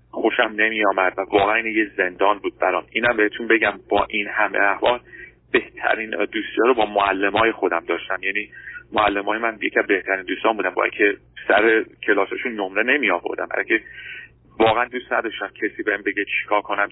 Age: 30-49